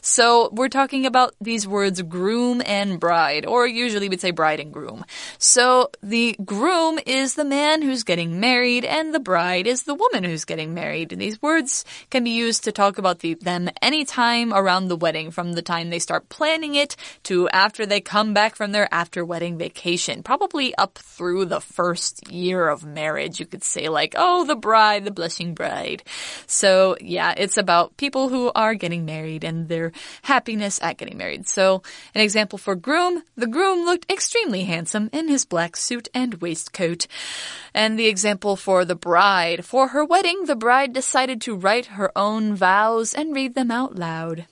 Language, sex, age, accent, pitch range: Chinese, female, 20-39, American, 180-265 Hz